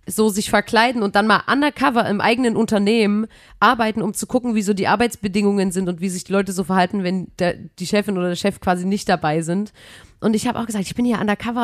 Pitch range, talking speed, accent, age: 195-235 Hz, 235 wpm, German, 30-49